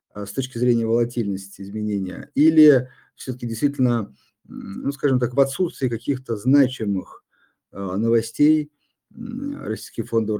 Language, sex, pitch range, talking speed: Russian, male, 105-135 Hz, 105 wpm